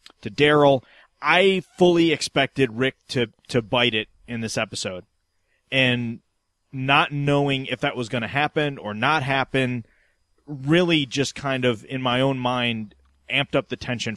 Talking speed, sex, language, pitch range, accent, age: 155 wpm, male, English, 115-145 Hz, American, 30-49